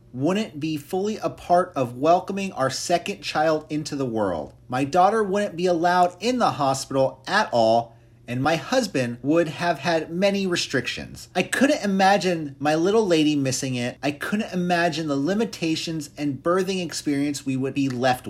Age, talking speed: 30-49, 165 wpm